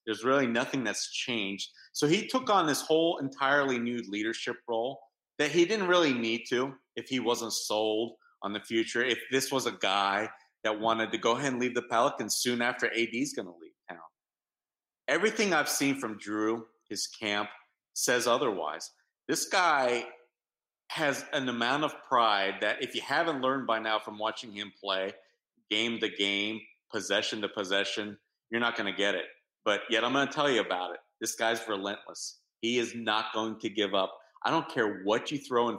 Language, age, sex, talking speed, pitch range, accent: English, 40-59, male, 190 wpm, 105-125 Hz, American